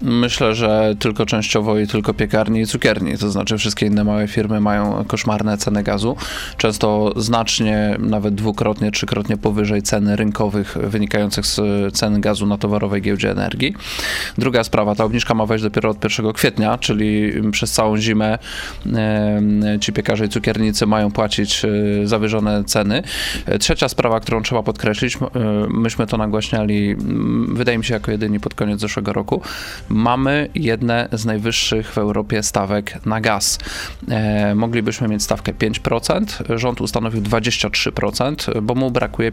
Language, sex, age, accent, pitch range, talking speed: Polish, male, 20-39, native, 105-115 Hz, 140 wpm